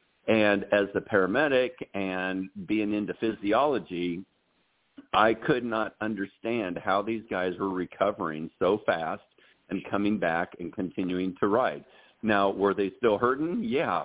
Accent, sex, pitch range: American, male, 95-115 Hz